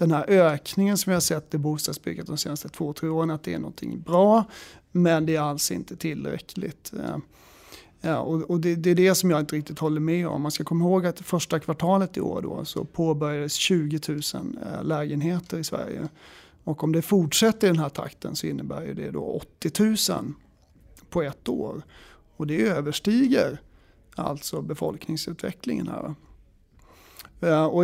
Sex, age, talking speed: male, 30-49, 175 wpm